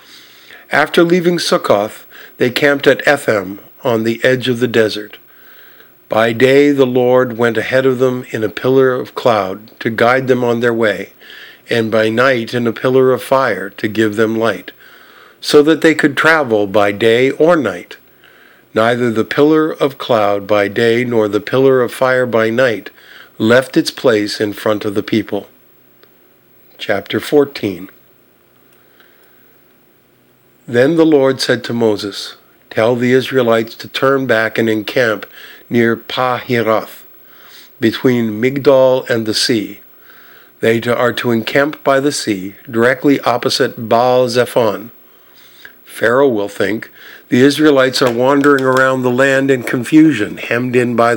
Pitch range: 115-130 Hz